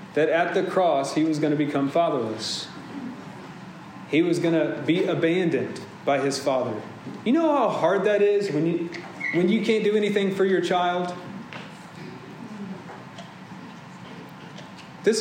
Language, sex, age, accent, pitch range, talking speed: English, male, 30-49, American, 155-190 Hz, 140 wpm